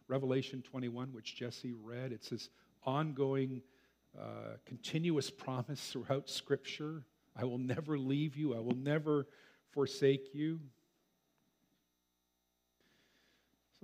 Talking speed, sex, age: 105 wpm, male, 50-69